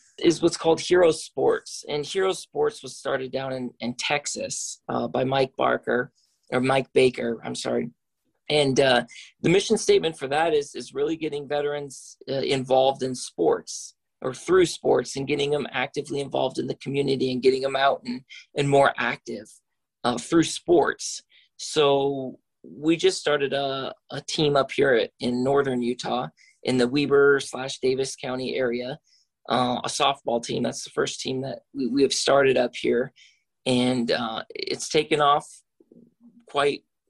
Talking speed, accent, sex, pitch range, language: 165 wpm, American, male, 130-155 Hz, English